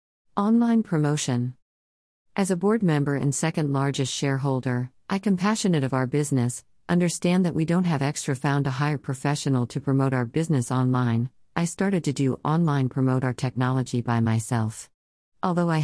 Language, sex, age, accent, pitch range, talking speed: English, female, 50-69, American, 130-165 Hz, 160 wpm